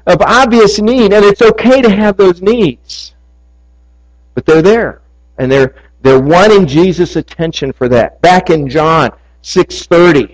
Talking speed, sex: 150 wpm, male